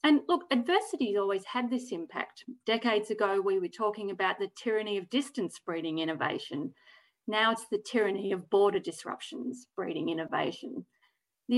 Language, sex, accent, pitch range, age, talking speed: English, female, Australian, 195-245 Hz, 40-59, 155 wpm